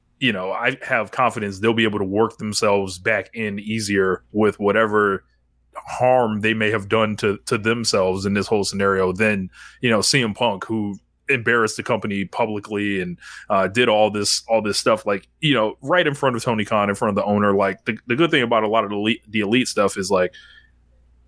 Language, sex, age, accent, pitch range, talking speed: English, male, 20-39, American, 95-115 Hz, 215 wpm